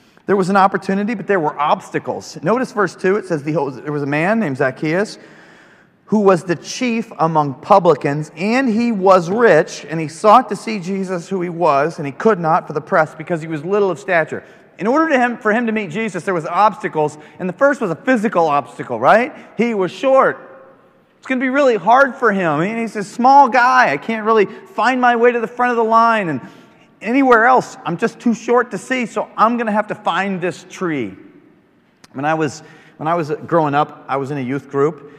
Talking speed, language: 215 wpm, English